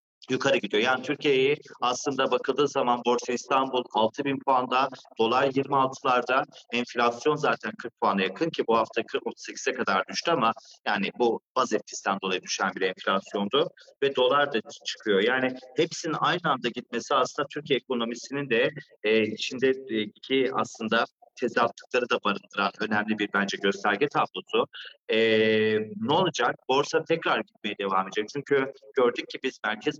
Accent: native